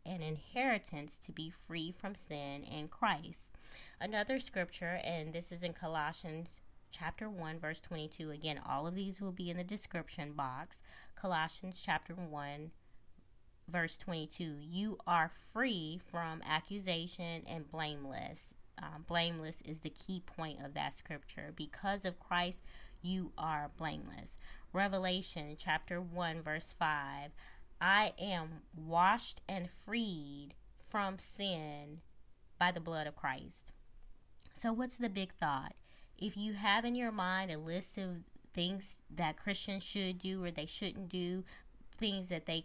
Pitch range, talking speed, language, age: 160-195 Hz, 140 wpm, English, 20-39